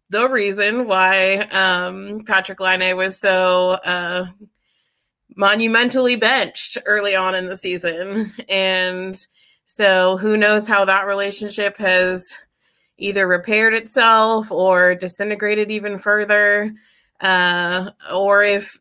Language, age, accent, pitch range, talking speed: English, 20-39, American, 180-210 Hz, 110 wpm